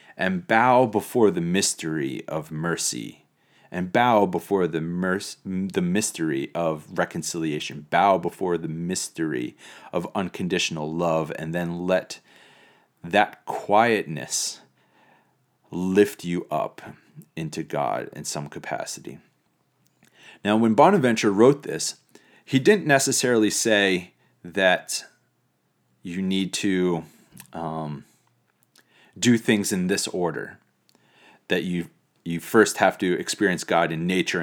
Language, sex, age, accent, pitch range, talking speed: English, male, 30-49, American, 80-105 Hz, 115 wpm